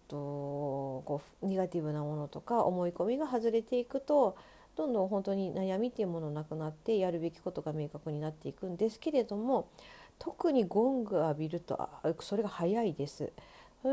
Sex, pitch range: female, 160-210 Hz